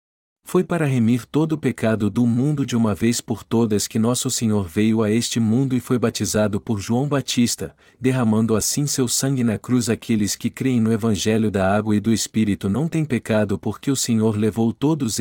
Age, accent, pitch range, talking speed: 50-69, Brazilian, 105-130 Hz, 195 wpm